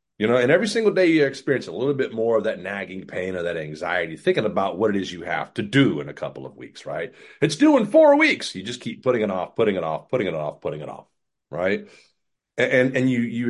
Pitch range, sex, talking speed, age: 105-145 Hz, male, 265 wpm, 30-49